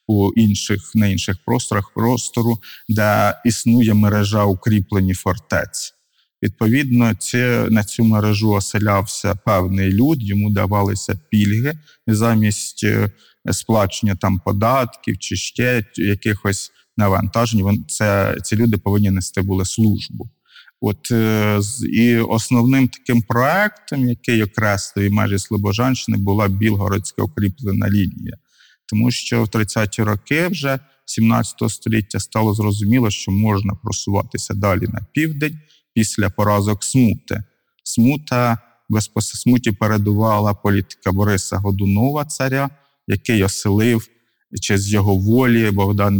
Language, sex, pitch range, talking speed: Ukrainian, male, 100-115 Hz, 100 wpm